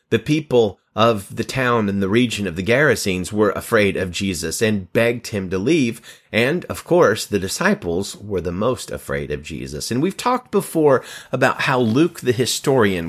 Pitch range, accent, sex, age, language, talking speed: 95-125 Hz, American, male, 30-49, English, 185 wpm